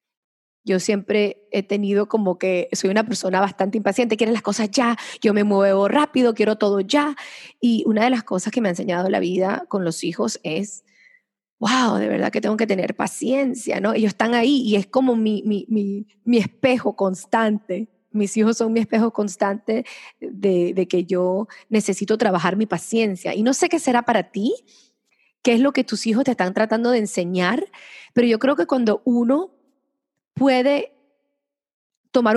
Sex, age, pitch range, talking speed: female, 20-39, 200-250 Hz, 180 wpm